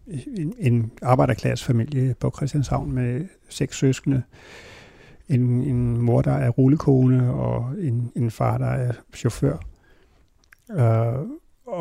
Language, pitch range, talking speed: Danish, 120-145 Hz, 110 wpm